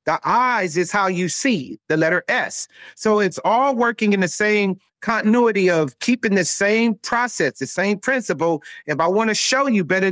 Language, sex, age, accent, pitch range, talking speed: English, male, 40-59, American, 170-220 Hz, 190 wpm